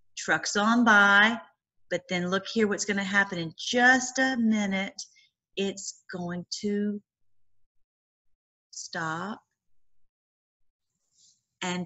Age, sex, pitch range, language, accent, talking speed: 40-59, female, 170-230 Hz, English, American, 100 wpm